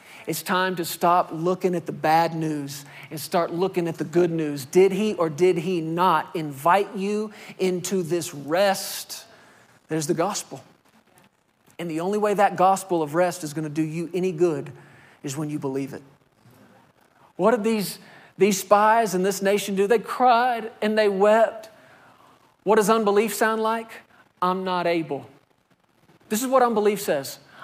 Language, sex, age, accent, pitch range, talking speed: English, male, 40-59, American, 170-220 Hz, 165 wpm